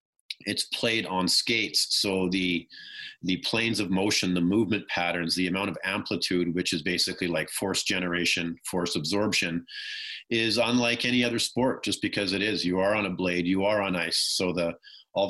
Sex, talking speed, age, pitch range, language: male, 180 wpm, 40-59, 90-105 Hz, English